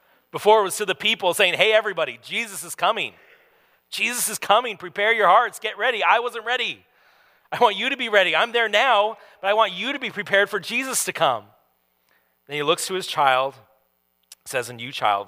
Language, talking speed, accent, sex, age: English, 210 wpm, American, male, 40-59